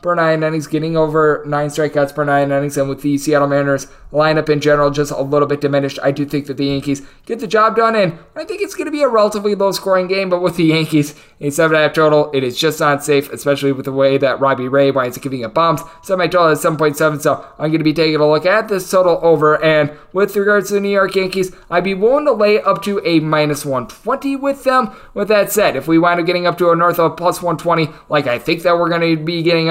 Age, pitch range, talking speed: 20-39, 145-180 Hz, 260 wpm